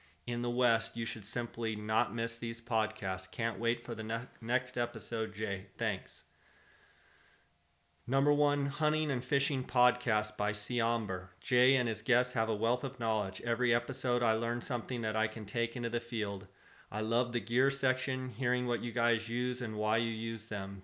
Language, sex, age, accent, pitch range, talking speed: English, male, 30-49, American, 105-125 Hz, 180 wpm